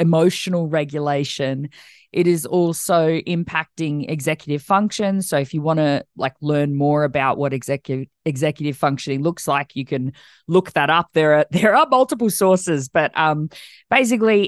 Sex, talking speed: female, 155 wpm